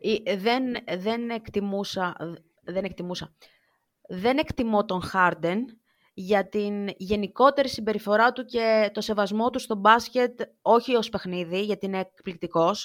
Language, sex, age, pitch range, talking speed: Greek, female, 20-39, 195-255 Hz, 110 wpm